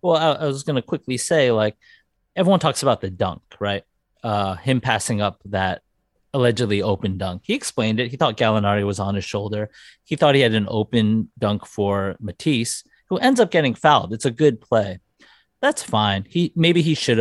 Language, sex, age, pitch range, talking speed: English, male, 30-49, 105-150 Hz, 195 wpm